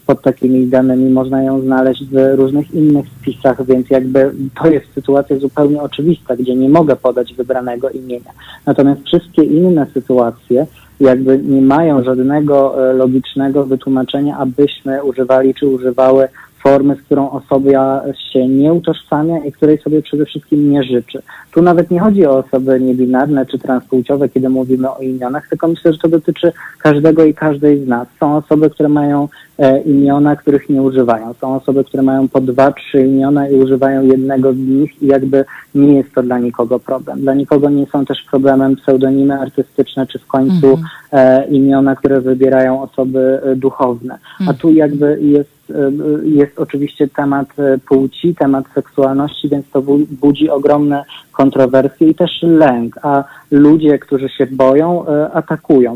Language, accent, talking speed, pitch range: Polish, native, 160 wpm, 130-145 Hz